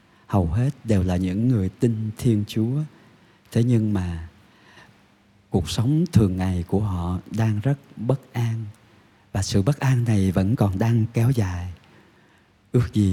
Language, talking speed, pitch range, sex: Vietnamese, 155 wpm, 100-120 Hz, male